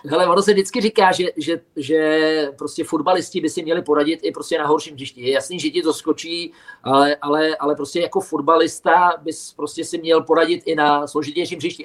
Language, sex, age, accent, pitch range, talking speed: Czech, male, 40-59, native, 145-165 Hz, 205 wpm